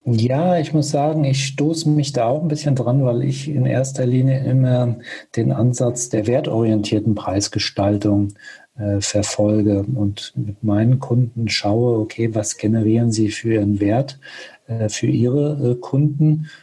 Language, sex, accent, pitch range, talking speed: German, male, German, 110-135 Hz, 150 wpm